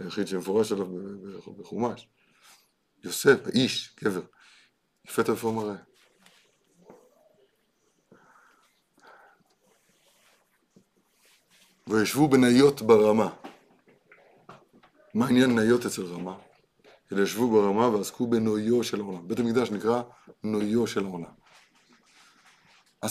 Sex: male